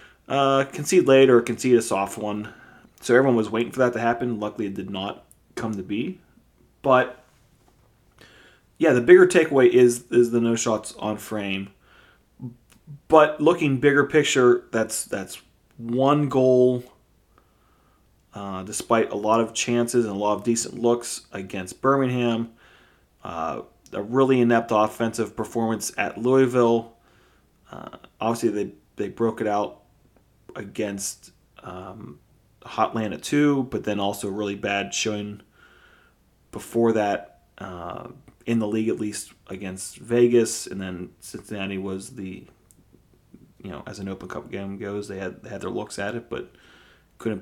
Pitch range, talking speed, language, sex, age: 100-125 Hz, 145 wpm, English, male, 30-49